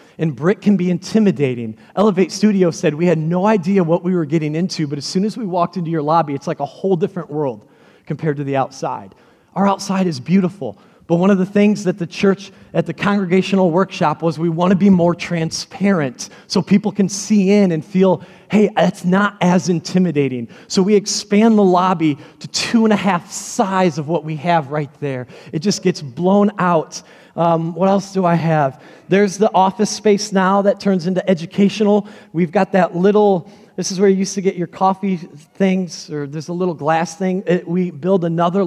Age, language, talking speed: 30-49, English, 205 wpm